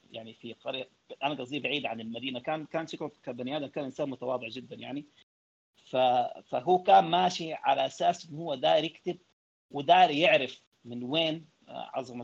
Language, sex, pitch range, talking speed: Arabic, male, 125-180 Hz, 150 wpm